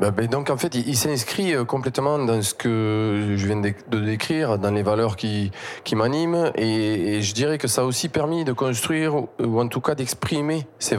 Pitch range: 105-130 Hz